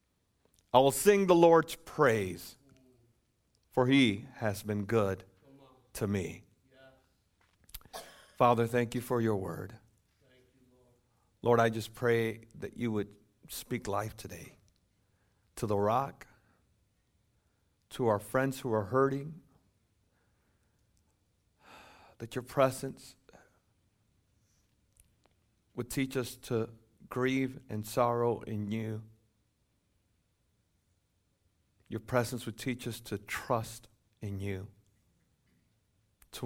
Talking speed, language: 100 wpm, English